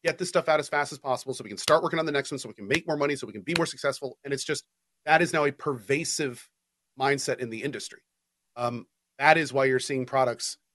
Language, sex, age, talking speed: English, male, 40-59, 270 wpm